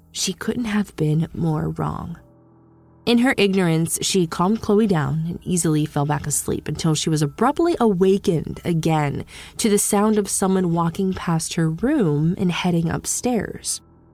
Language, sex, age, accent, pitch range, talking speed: English, female, 20-39, American, 160-205 Hz, 155 wpm